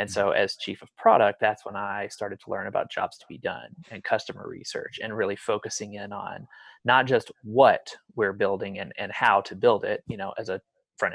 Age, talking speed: 30-49, 220 wpm